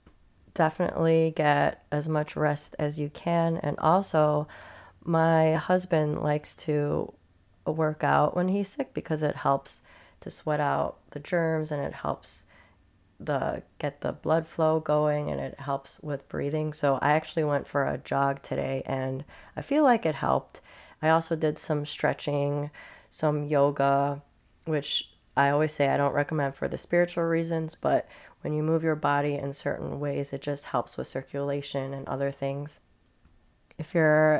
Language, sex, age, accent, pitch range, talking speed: English, female, 30-49, American, 140-165 Hz, 160 wpm